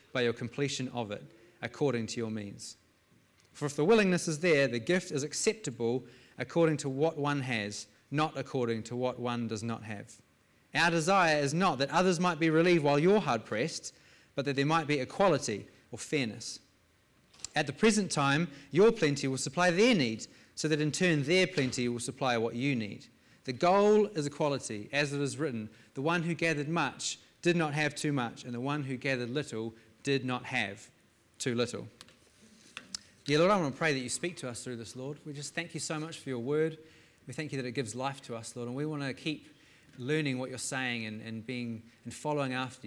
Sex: male